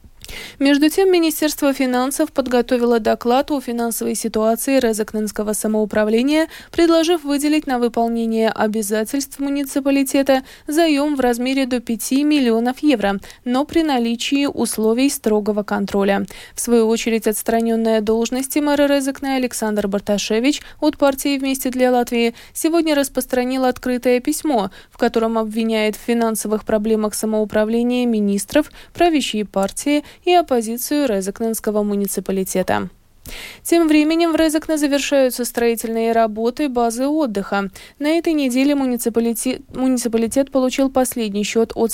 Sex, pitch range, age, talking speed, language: female, 220-280 Hz, 20-39, 115 wpm, Russian